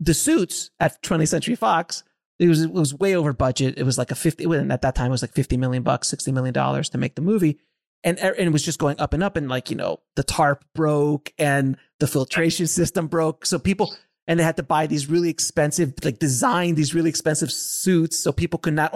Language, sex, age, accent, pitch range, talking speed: English, male, 30-49, American, 155-200 Hz, 245 wpm